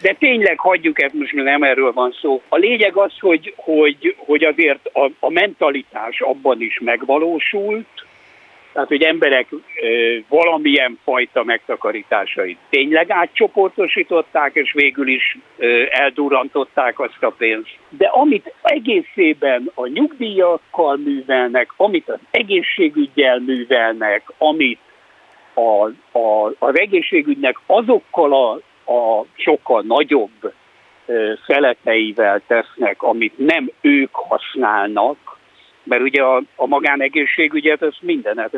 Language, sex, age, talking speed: Hungarian, male, 60-79, 110 wpm